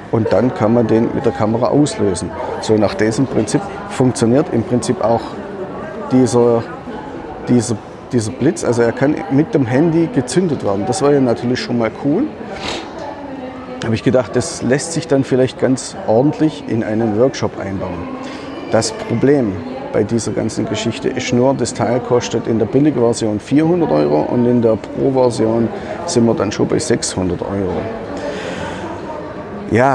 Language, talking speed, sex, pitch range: German, 160 wpm, male, 115-140 Hz